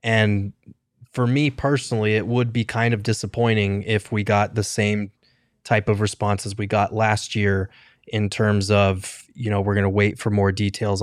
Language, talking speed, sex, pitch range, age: English, 190 wpm, male, 105-115 Hz, 20-39